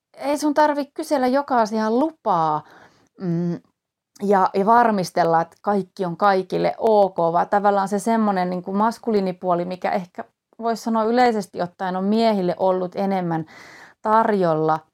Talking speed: 130 wpm